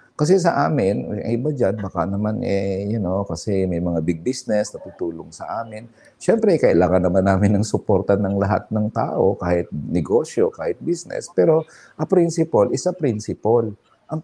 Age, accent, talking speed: 50-69, Filipino, 170 wpm